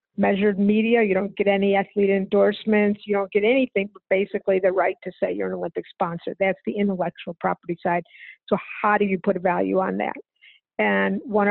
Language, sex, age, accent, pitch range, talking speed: English, female, 50-69, American, 190-215 Hz, 200 wpm